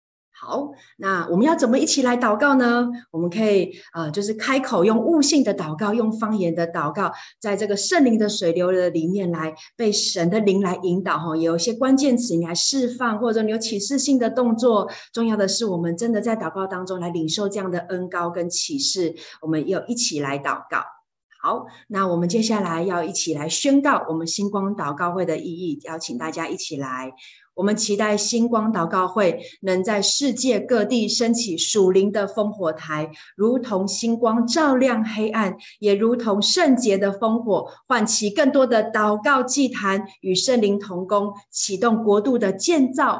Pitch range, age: 175-230 Hz, 30-49